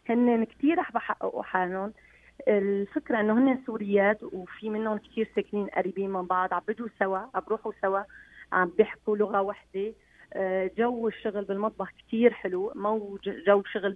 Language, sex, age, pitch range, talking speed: Arabic, female, 30-49, 195-235 Hz, 150 wpm